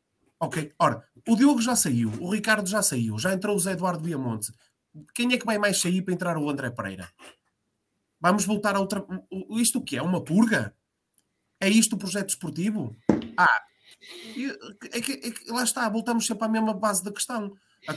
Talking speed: 190 wpm